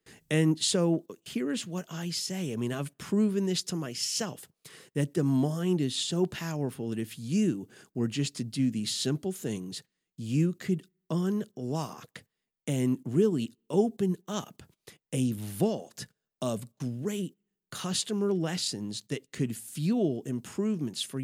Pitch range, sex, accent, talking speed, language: 125-175 Hz, male, American, 135 wpm, English